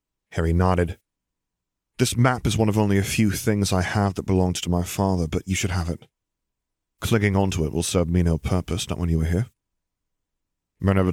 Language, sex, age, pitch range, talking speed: English, male, 30-49, 90-110 Hz, 200 wpm